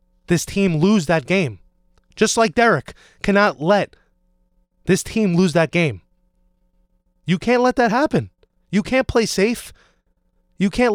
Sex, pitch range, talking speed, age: male, 140-210 Hz, 145 wpm, 20-39